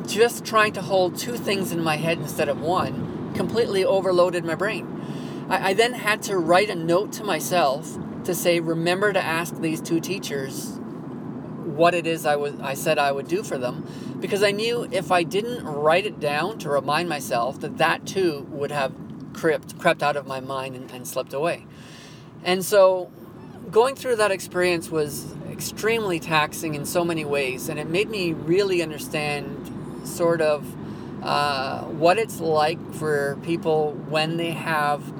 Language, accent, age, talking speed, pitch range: English, American, 30-49, 175 wpm, 150-185 Hz